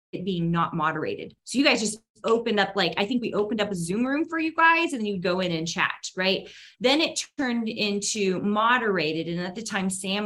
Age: 20-39